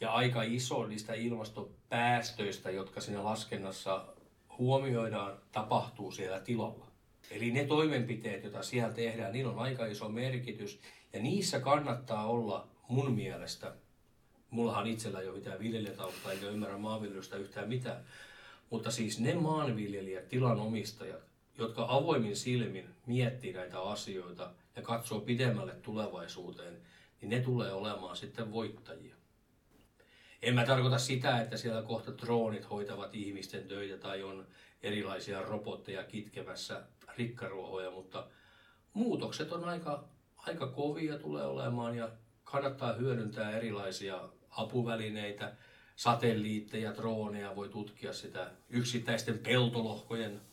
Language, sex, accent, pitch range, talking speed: Finnish, male, native, 105-125 Hz, 115 wpm